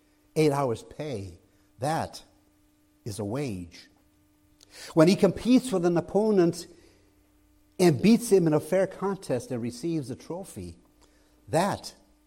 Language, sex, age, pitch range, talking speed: English, male, 60-79, 125-205 Hz, 120 wpm